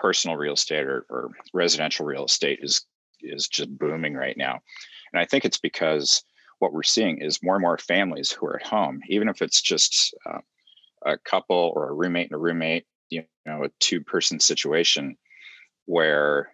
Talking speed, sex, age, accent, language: 185 wpm, male, 40-59, American, English